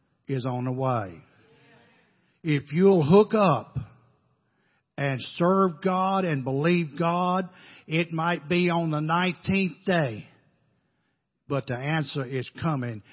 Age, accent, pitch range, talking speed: 60-79, American, 130-170 Hz, 120 wpm